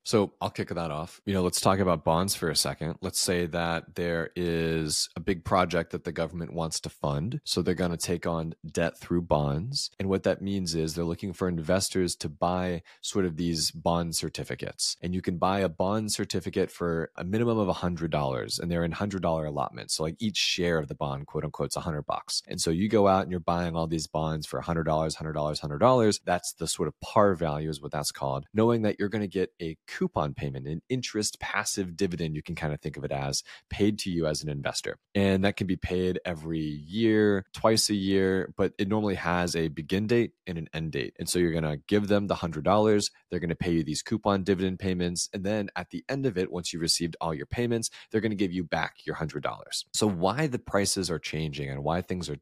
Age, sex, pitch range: 30-49, male, 80-100 Hz